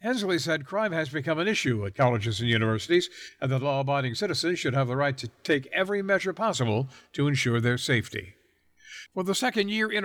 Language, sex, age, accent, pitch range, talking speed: English, male, 60-79, American, 120-170 Hz, 205 wpm